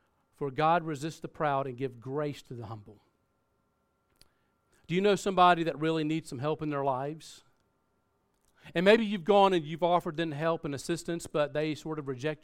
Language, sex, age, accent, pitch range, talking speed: English, male, 40-59, American, 140-180 Hz, 190 wpm